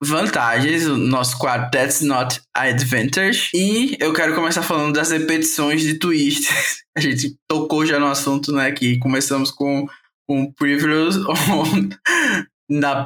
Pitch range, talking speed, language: 135-165 Hz, 140 wpm, Portuguese